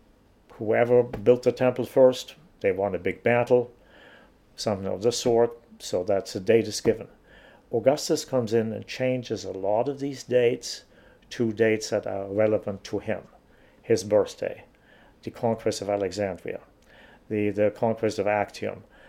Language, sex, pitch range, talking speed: English, male, 105-125 Hz, 150 wpm